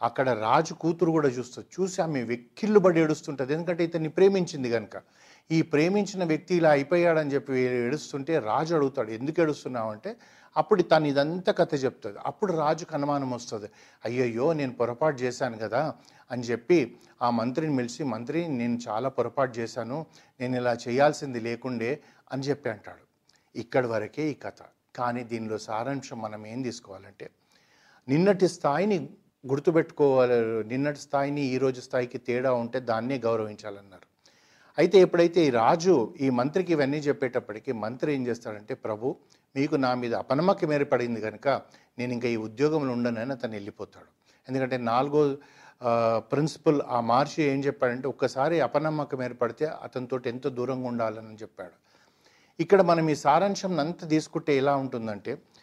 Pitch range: 120-155 Hz